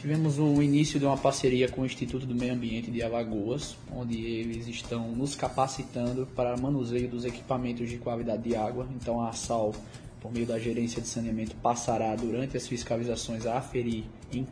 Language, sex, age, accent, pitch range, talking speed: Portuguese, male, 20-39, Brazilian, 115-130 Hz, 180 wpm